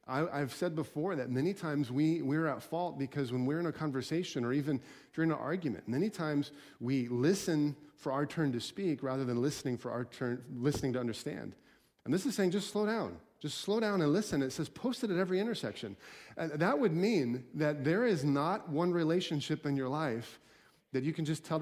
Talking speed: 210 wpm